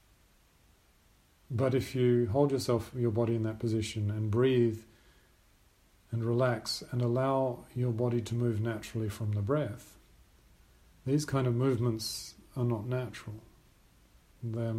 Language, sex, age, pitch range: English, male, 40-59, 100-120 Hz